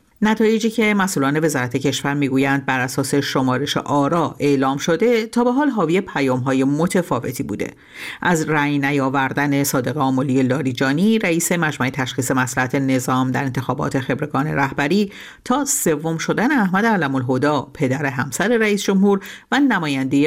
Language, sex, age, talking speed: Persian, female, 50-69, 130 wpm